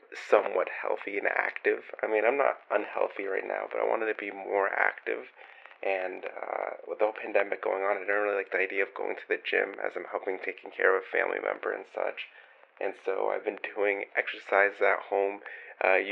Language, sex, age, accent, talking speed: English, male, 30-49, American, 215 wpm